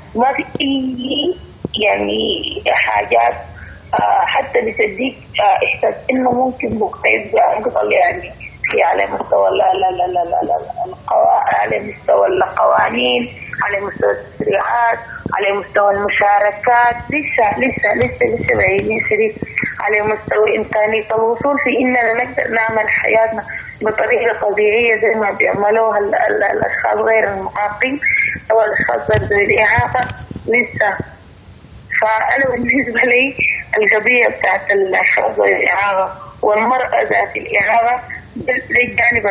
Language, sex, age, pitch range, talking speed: English, female, 20-39, 210-265 Hz, 100 wpm